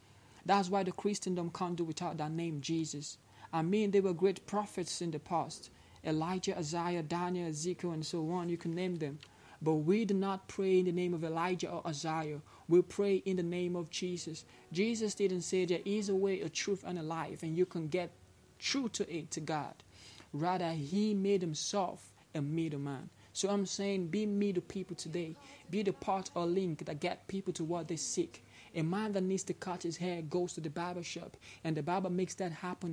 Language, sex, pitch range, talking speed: English, male, 160-185 Hz, 210 wpm